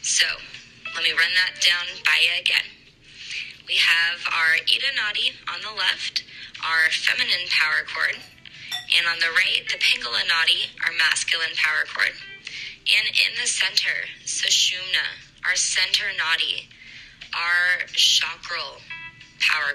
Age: 20-39